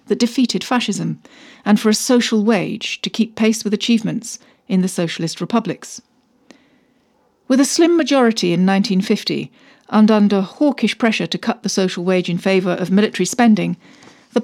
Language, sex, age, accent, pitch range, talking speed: English, female, 40-59, British, 185-245 Hz, 160 wpm